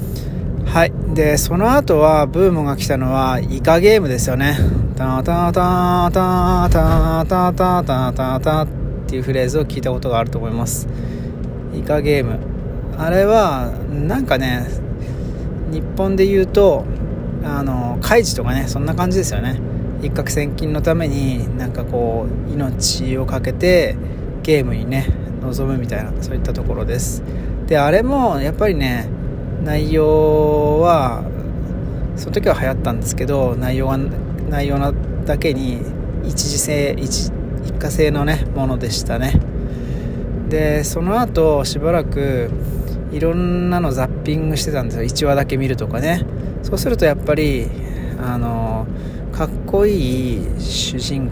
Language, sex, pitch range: Japanese, male, 125-155 Hz